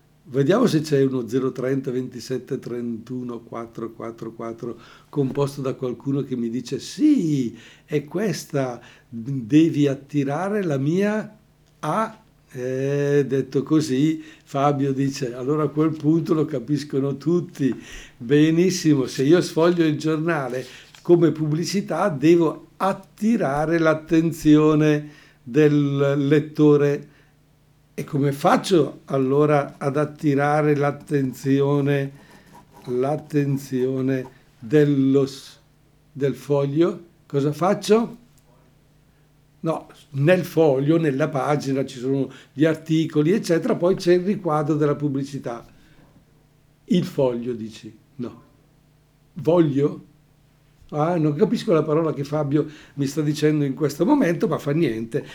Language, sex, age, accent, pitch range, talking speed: Italian, male, 60-79, native, 135-160 Hz, 105 wpm